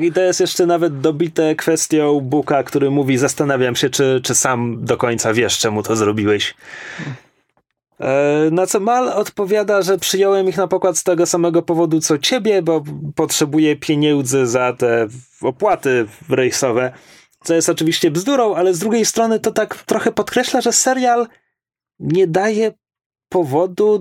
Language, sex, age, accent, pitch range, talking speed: Polish, male, 30-49, native, 130-185 Hz, 150 wpm